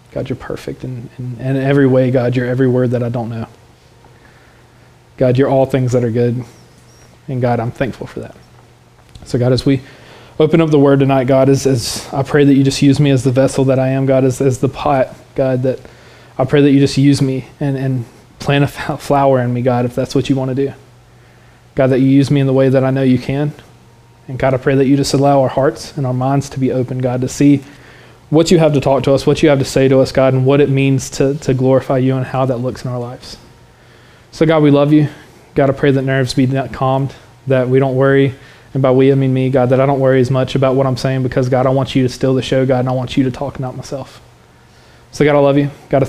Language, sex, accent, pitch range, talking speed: English, male, American, 125-140 Hz, 265 wpm